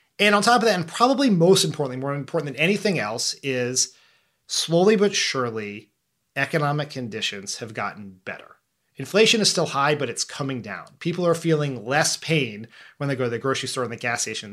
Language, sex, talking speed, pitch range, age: English, male, 195 wpm, 130-165 Hz, 30-49